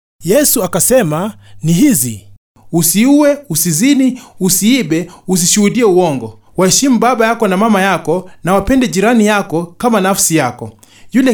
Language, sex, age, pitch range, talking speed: English, male, 30-49, 150-235 Hz, 120 wpm